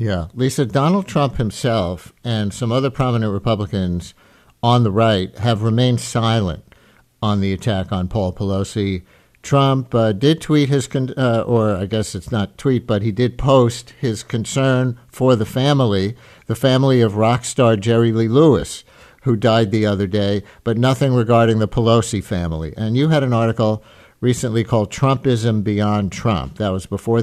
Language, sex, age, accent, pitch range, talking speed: English, male, 50-69, American, 105-125 Hz, 165 wpm